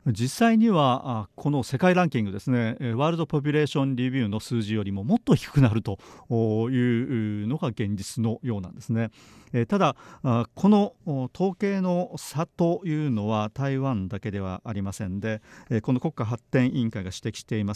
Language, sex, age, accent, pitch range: Japanese, male, 40-59, native, 110-145 Hz